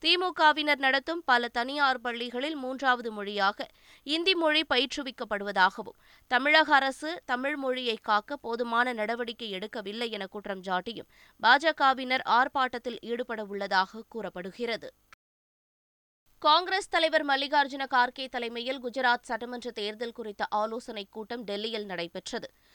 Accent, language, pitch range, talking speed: native, Tamil, 210-260 Hz, 105 wpm